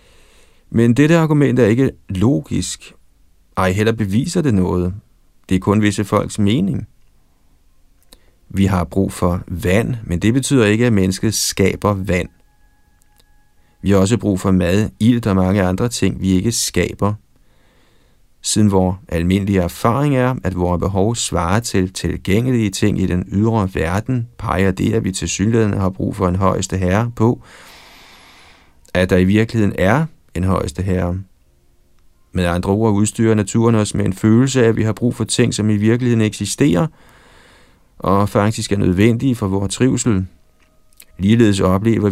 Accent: native